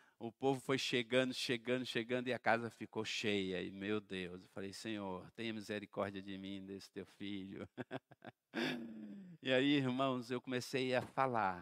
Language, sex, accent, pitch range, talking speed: Portuguese, male, Brazilian, 120-180 Hz, 160 wpm